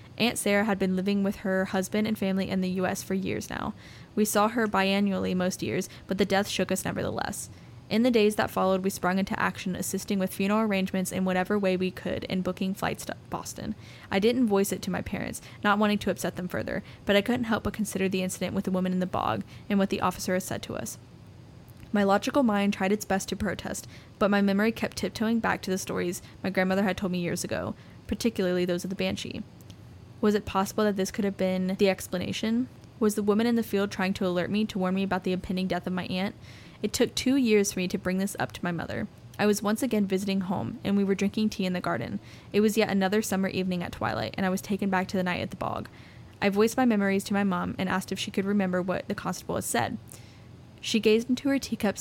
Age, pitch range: 10-29, 185-210 Hz